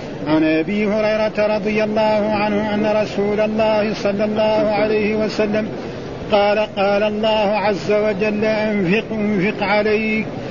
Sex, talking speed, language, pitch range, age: male, 125 wpm, Arabic, 210-220 Hz, 50-69